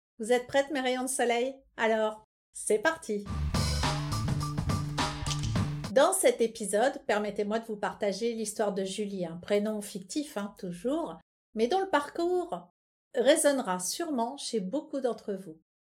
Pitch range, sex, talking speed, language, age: 205-275 Hz, female, 130 wpm, French, 50-69